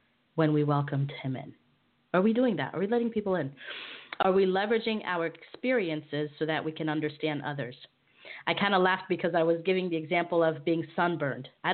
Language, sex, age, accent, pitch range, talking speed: English, female, 30-49, American, 145-175 Hz, 200 wpm